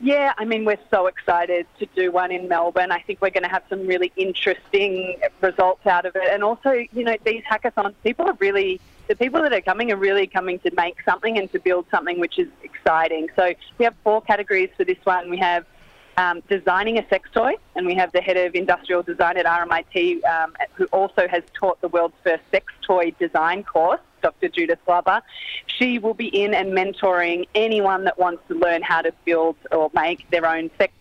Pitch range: 175-225 Hz